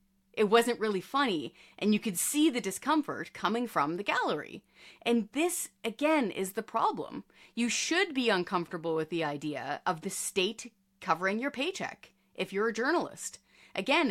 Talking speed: 160 wpm